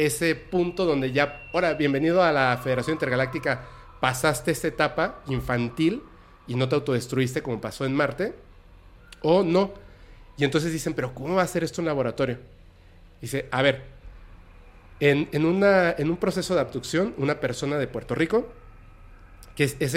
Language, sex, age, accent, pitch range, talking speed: Spanish, male, 40-59, Mexican, 120-160 Hz, 165 wpm